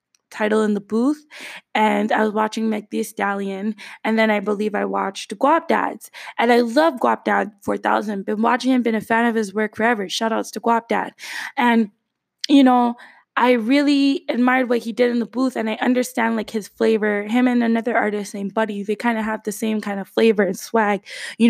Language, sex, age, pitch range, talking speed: English, female, 20-39, 215-265 Hz, 210 wpm